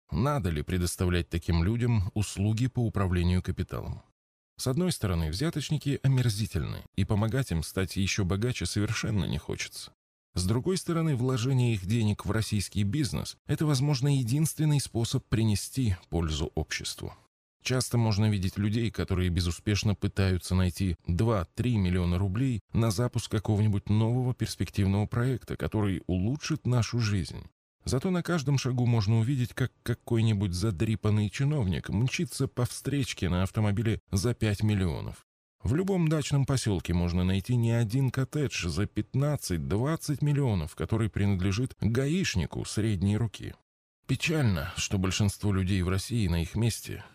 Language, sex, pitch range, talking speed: Russian, male, 95-125 Hz, 130 wpm